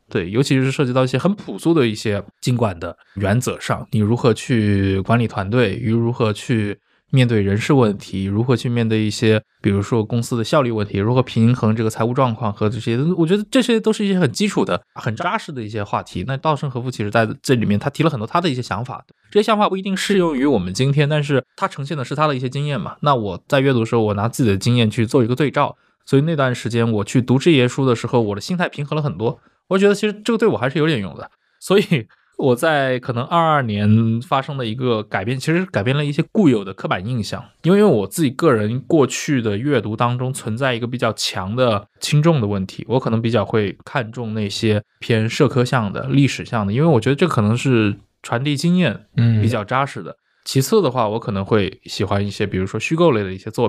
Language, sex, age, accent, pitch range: Chinese, male, 20-39, native, 110-150 Hz